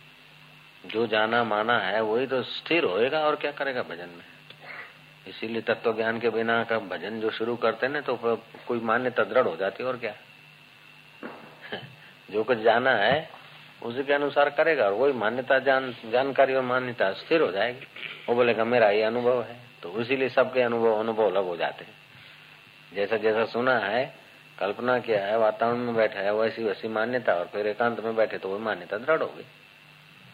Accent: native